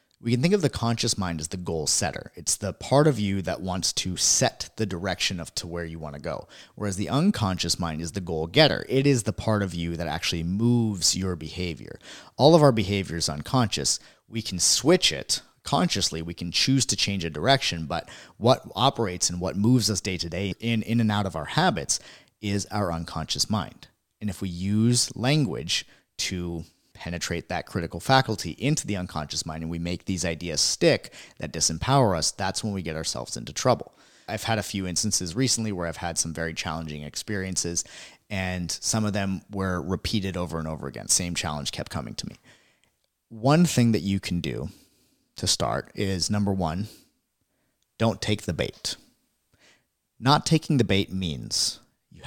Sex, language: male, English